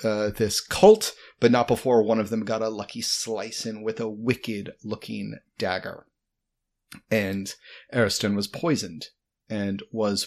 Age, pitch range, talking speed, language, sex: 30-49, 115-170 Hz, 145 wpm, English, male